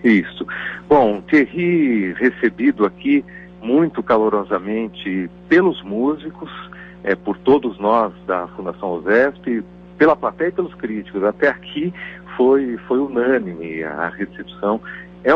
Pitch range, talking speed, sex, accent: 90-125 Hz, 110 wpm, male, Brazilian